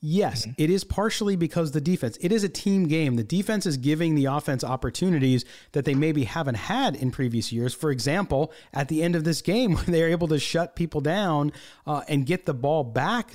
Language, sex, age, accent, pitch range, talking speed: English, male, 40-59, American, 145-195 Hz, 215 wpm